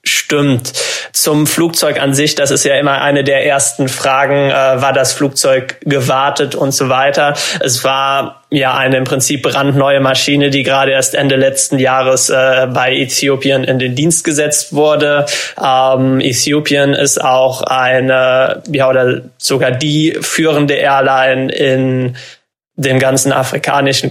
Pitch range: 130-145 Hz